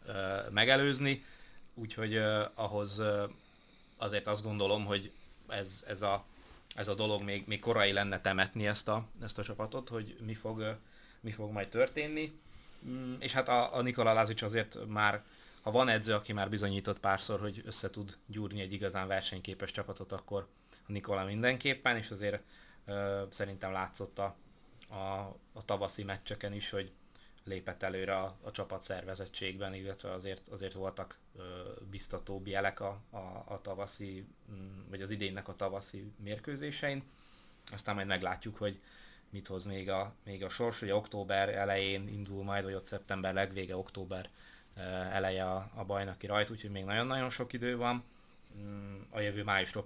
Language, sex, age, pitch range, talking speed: Hungarian, male, 30-49, 95-105 Hz, 155 wpm